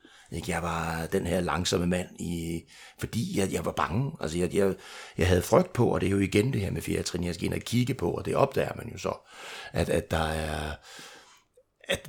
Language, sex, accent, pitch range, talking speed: Danish, male, native, 80-95 Hz, 225 wpm